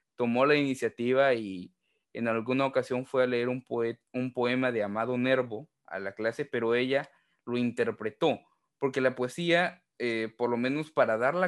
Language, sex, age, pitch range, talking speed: Spanish, male, 20-39, 115-145 Hz, 175 wpm